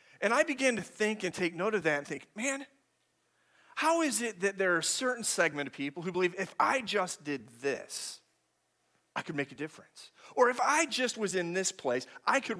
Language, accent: English, American